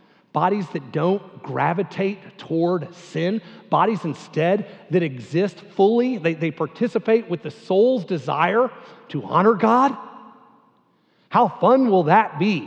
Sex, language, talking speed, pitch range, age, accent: male, English, 125 wpm, 170-225 Hz, 40-59, American